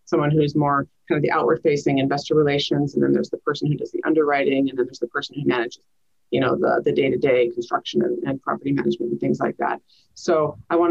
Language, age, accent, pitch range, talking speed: English, 30-49, American, 150-175 Hz, 235 wpm